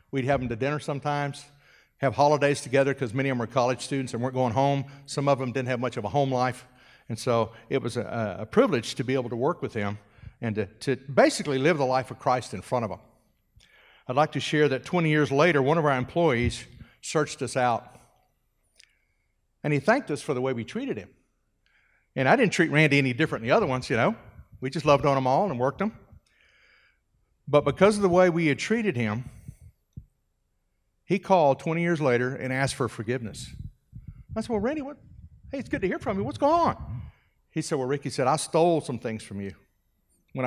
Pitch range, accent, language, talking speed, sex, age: 120-150 Hz, American, English, 220 wpm, male, 50-69